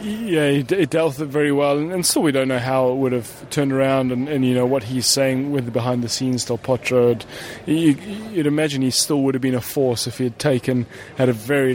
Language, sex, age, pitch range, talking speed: English, male, 20-39, 130-150 Hz, 270 wpm